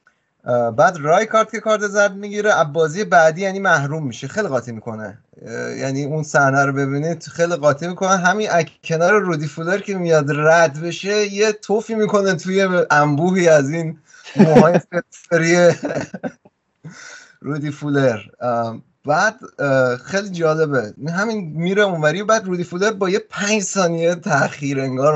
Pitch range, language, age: 145-195 Hz, Persian, 30-49